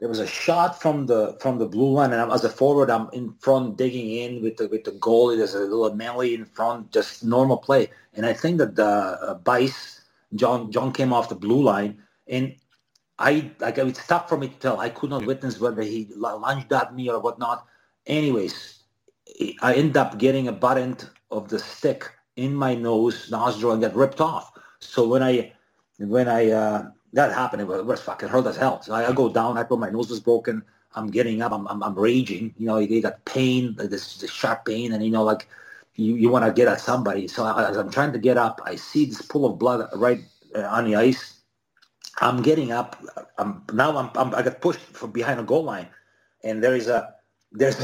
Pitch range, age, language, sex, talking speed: 110-135 Hz, 40-59, English, male, 220 wpm